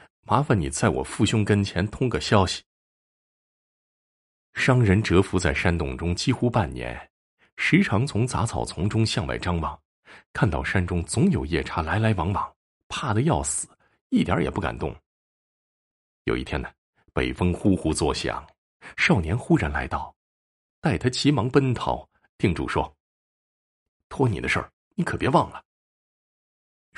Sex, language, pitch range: male, Chinese, 70-105 Hz